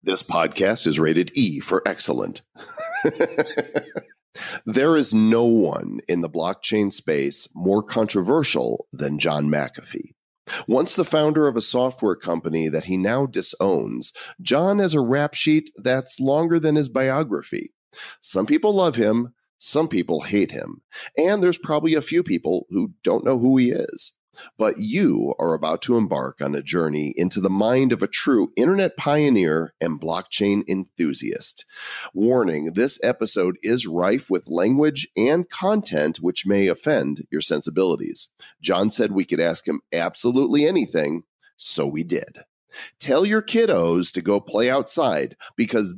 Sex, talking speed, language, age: male, 150 wpm, English, 40-59